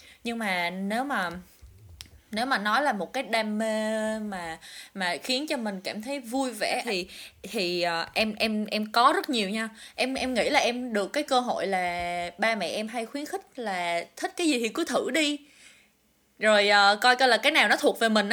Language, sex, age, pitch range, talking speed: Vietnamese, female, 20-39, 205-275 Hz, 210 wpm